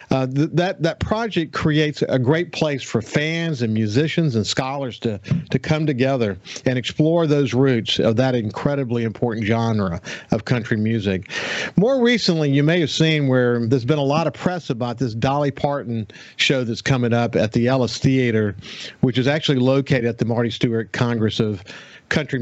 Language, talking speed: English, 175 wpm